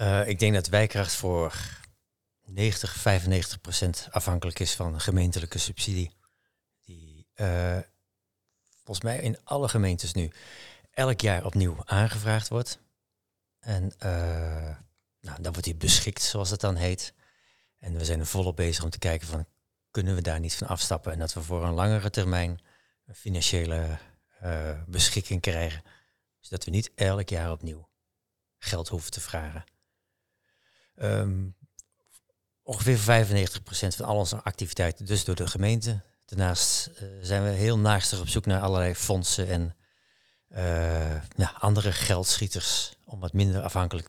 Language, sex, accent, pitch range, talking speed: Dutch, male, Dutch, 85-105 Hz, 145 wpm